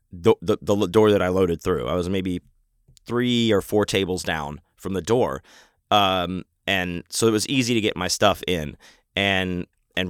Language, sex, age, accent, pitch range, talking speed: English, male, 30-49, American, 90-120 Hz, 190 wpm